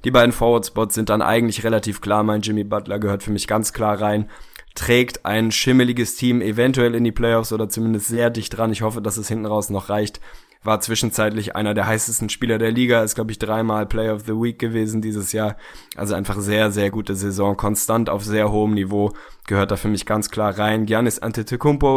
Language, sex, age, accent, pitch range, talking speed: German, male, 10-29, German, 105-115 Hz, 210 wpm